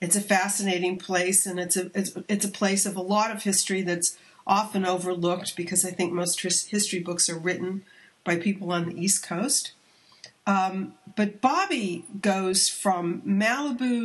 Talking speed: 160 wpm